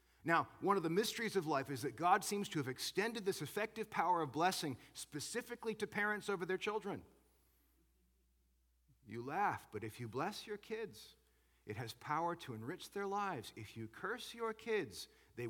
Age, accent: 40-59, American